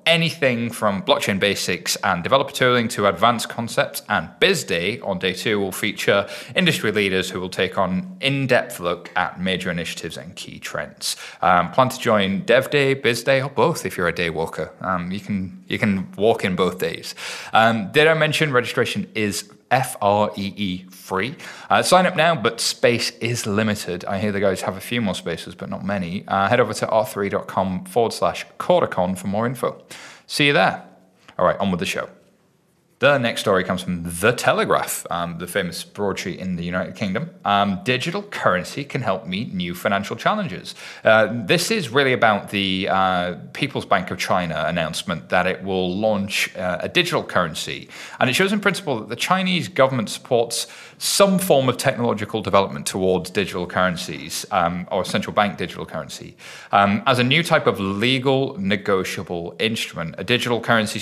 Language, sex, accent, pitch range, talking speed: English, male, British, 95-135 Hz, 180 wpm